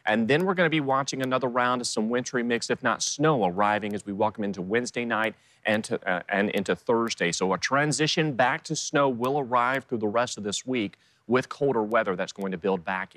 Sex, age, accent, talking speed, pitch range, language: male, 30-49, American, 225 wpm, 110-135 Hz, English